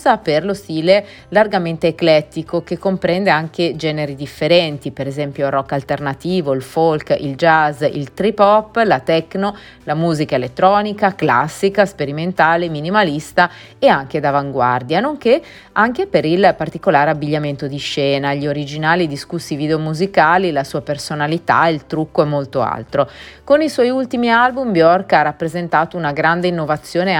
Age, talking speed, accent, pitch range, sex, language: 30-49, 145 wpm, native, 150-185 Hz, female, Italian